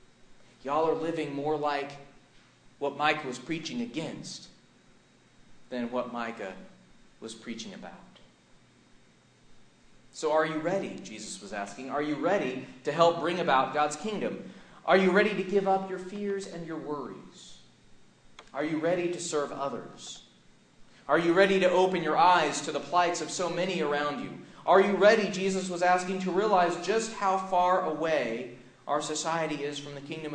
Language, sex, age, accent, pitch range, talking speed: English, male, 40-59, American, 125-170 Hz, 160 wpm